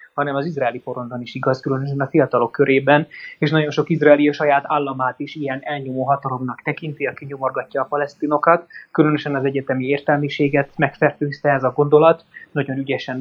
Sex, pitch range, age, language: male, 135-155 Hz, 20-39, Hungarian